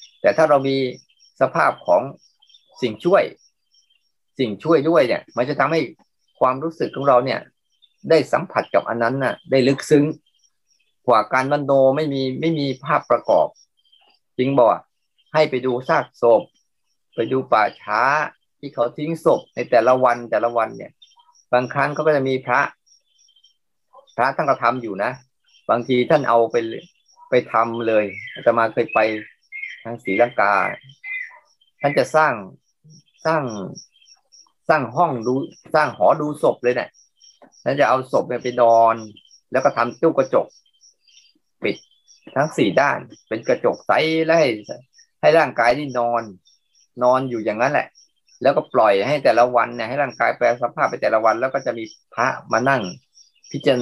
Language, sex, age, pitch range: Thai, male, 20-39, 120-155 Hz